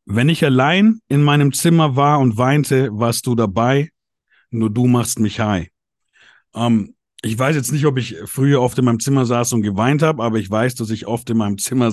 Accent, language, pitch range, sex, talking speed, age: German, German, 110-145 Hz, male, 210 wpm, 50-69